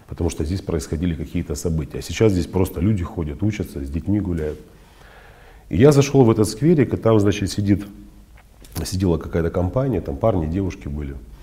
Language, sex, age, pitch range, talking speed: Russian, male, 40-59, 85-105 Hz, 175 wpm